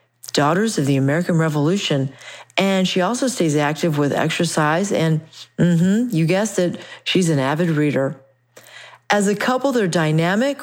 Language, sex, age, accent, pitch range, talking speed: English, female, 40-59, American, 150-205 Hz, 150 wpm